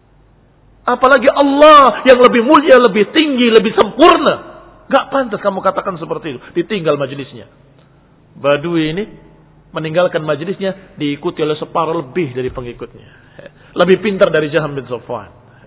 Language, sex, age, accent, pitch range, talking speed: Indonesian, male, 40-59, native, 135-200 Hz, 125 wpm